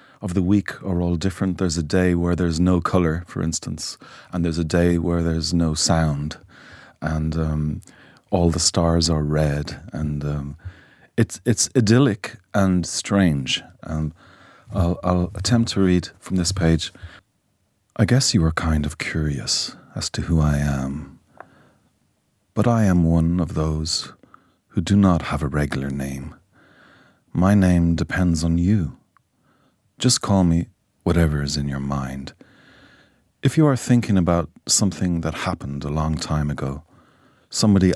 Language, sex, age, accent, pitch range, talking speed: English, male, 40-59, Irish, 75-95 Hz, 155 wpm